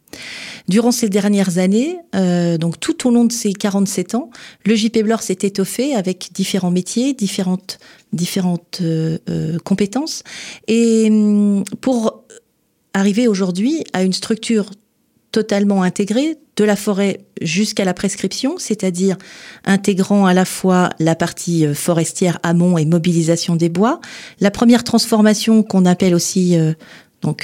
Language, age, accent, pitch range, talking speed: French, 40-59, French, 180-220 Hz, 130 wpm